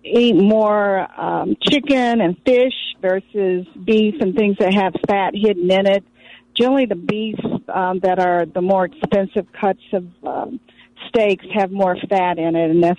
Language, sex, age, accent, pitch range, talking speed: English, female, 50-69, American, 175-215 Hz, 165 wpm